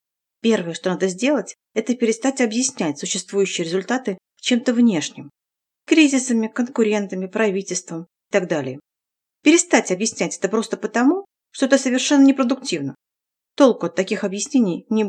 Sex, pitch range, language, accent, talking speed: female, 200-270 Hz, Russian, native, 125 wpm